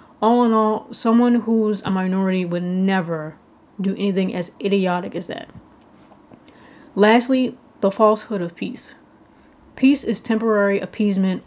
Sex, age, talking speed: female, 20-39, 125 wpm